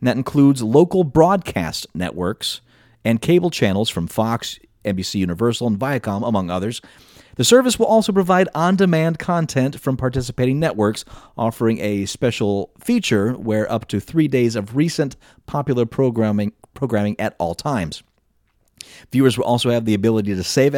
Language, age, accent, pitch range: English, 30-49, American, 100-135 Hz